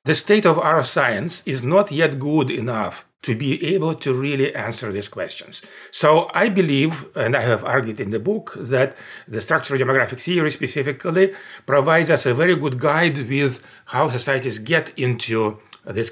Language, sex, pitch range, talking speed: English, male, 120-160 Hz, 170 wpm